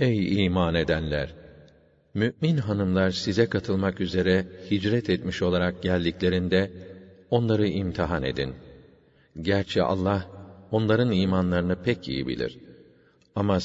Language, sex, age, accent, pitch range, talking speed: English, male, 50-69, Turkish, 90-105 Hz, 100 wpm